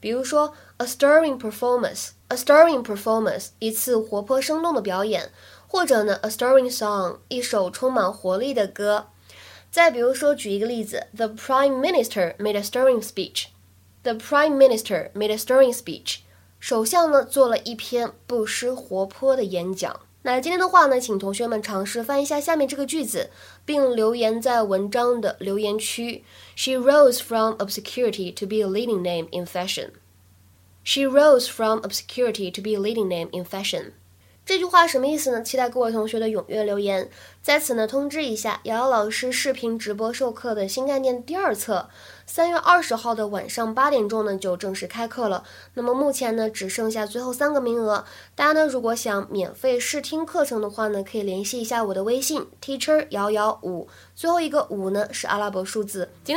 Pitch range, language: 200-265 Hz, Chinese